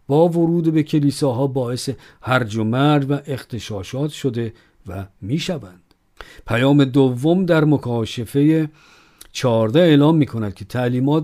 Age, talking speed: 50-69, 135 wpm